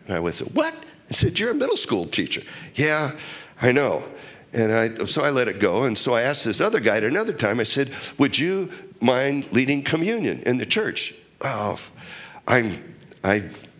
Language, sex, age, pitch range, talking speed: English, male, 60-79, 130-190 Hz, 185 wpm